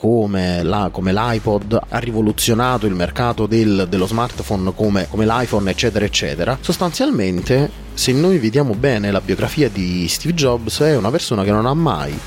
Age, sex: 30-49, male